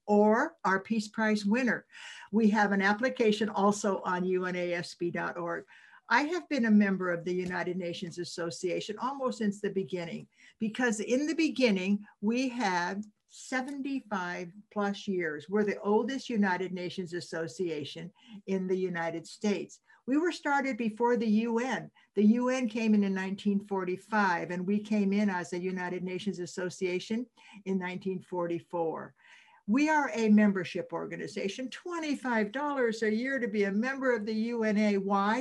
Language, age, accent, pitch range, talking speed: English, 60-79, American, 190-240 Hz, 140 wpm